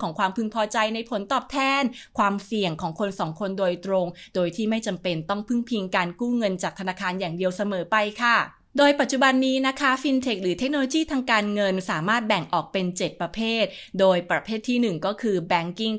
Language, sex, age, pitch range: English, female, 20-39, 195-255 Hz